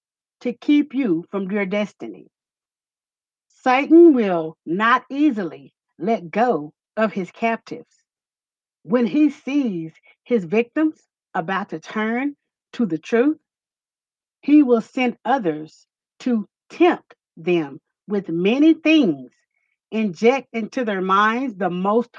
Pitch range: 185-270 Hz